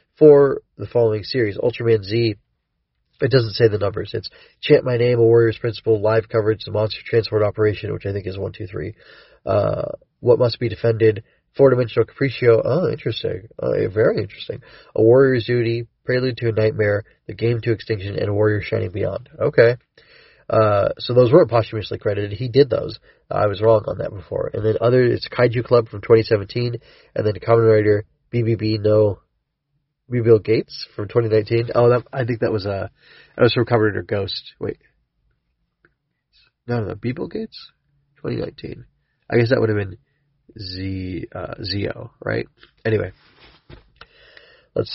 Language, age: English, 30-49